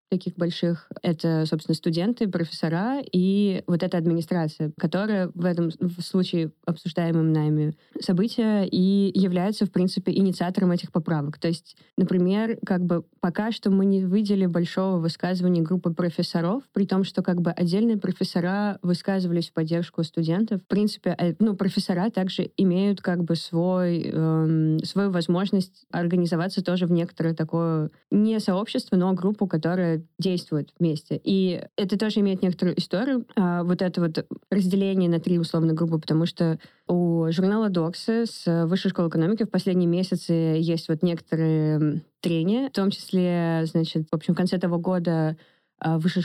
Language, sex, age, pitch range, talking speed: Russian, female, 20-39, 165-190 Hz, 145 wpm